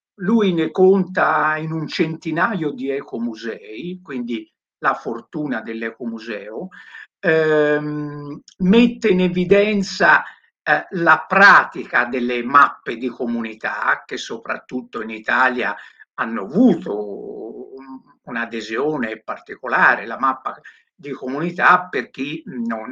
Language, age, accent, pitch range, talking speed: Italian, 60-79, native, 120-190 Hz, 100 wpm